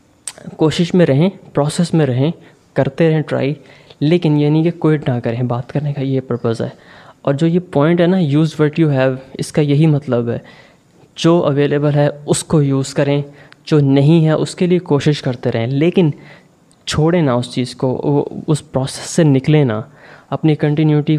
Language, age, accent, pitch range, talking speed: English, 20-39, Indian, 130-150 Hz, 165 wpm